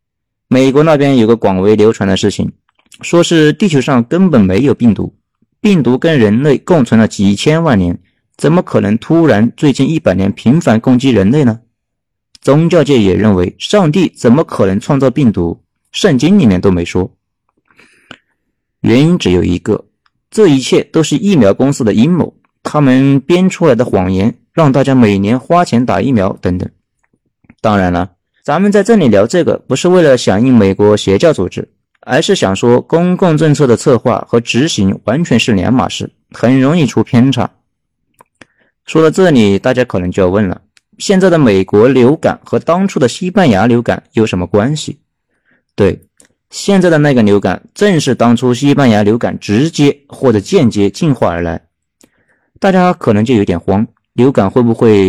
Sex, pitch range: male, 100-155 Hz